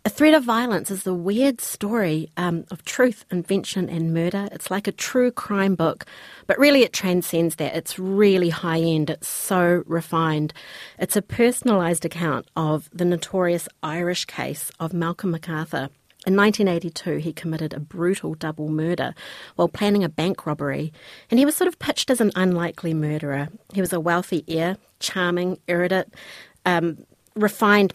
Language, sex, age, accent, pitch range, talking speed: English, female, 40-59, Australian, 160-195 Hz, 160 wpm